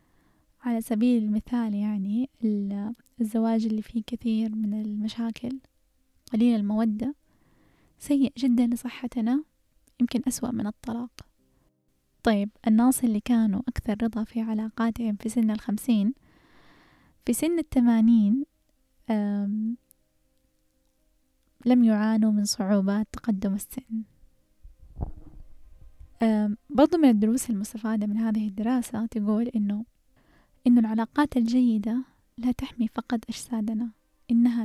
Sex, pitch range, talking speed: female, 215-240 Hz, 95 wpm